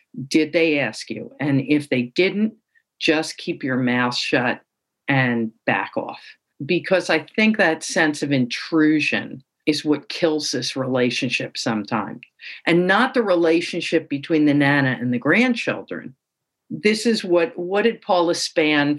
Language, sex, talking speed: English, female, 145 wpm